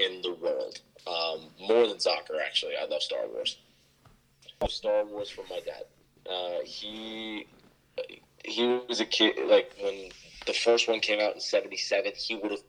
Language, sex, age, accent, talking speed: English, male, 20-39, American, 165 wpm